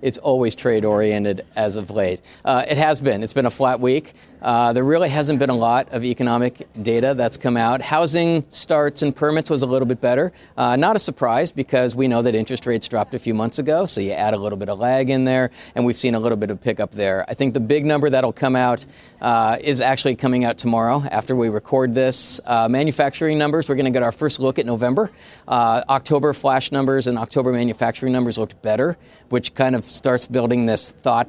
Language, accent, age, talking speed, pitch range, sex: English, American, 40-59, 230 wpm, 115-135 Hz, male